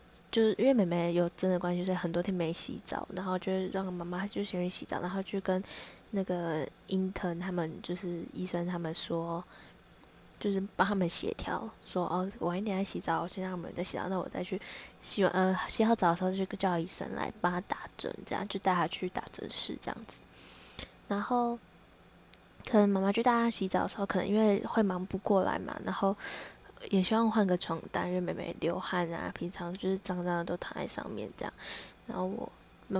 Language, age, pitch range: Chinese, 20-39, 175-200 Hz